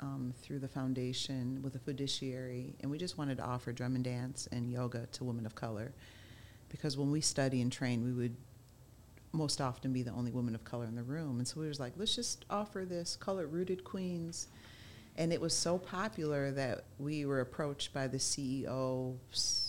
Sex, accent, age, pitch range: female, American, 40-59, 125-140 Hz